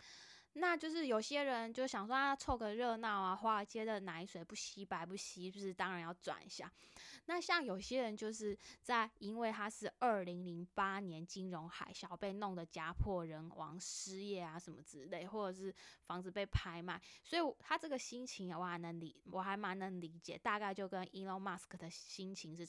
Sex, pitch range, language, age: female, 175-230 Hz, Chinese, 10-29